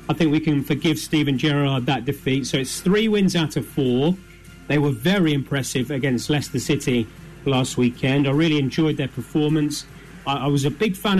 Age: 30-49